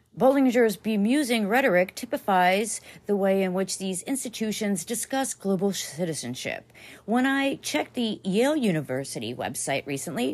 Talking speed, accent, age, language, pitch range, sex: 120 wpm, American, 40-59, English, 170-245 Hz, female